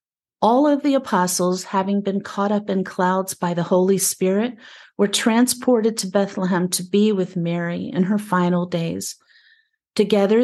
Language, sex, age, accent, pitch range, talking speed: English, female, 50-69, American, 185-215 Hz, 155 wpm